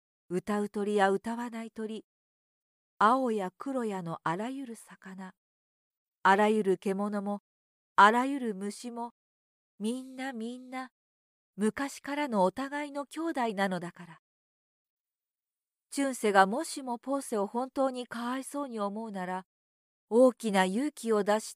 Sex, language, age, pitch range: female, Japanese, 40-59, 195-260 Hz